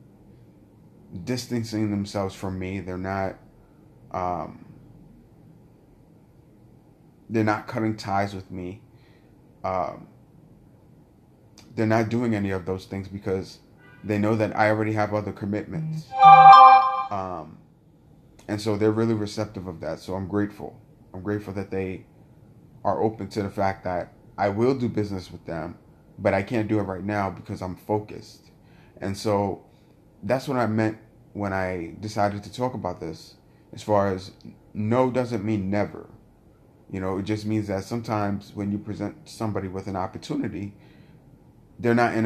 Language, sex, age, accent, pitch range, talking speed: English, male, 30-49, American, 95-110 Hz, 150 wpm